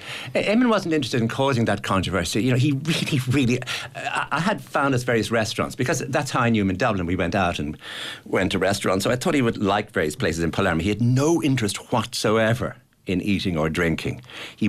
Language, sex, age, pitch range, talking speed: English, male, 60-79, 95-125 Hz, 215 wpm